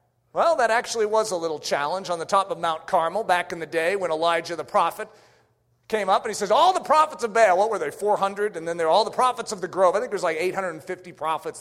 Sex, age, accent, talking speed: male, 40-59, American, 270 wpm